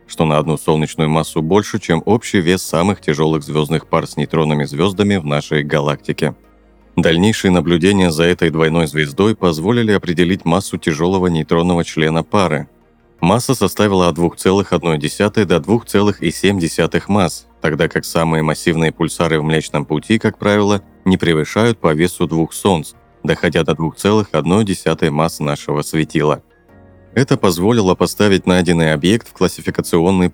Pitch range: 80-95 Hz